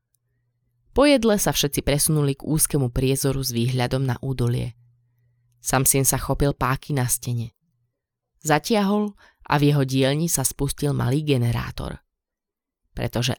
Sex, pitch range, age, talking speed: female, 120-150 Hz, 20-39, 130 wpm